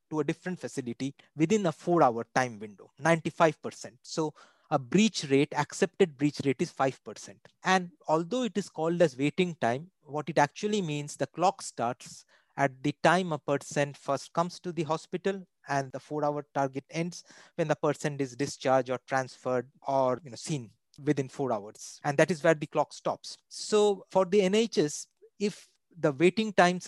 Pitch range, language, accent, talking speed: 145-180 Hz, English, Indian, 175 wpm